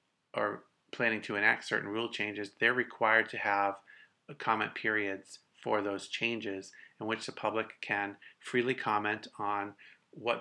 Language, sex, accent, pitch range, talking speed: English, male, American, 105-120 Hz, 145 wpm